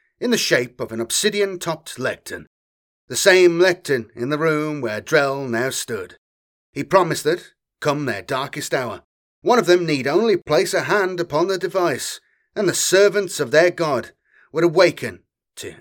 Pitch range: 130-180 Hz